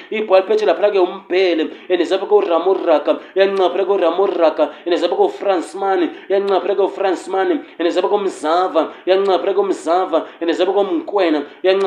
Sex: male